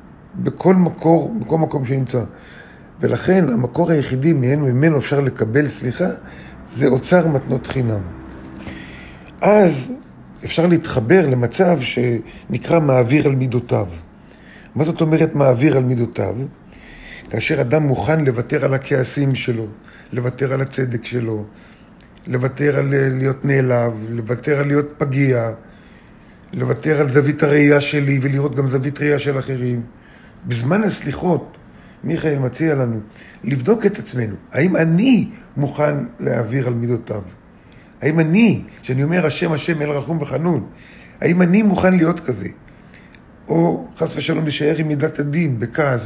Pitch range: 125-160 Hz